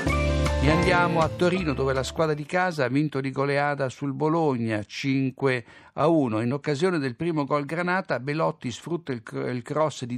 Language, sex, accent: Italian, male, native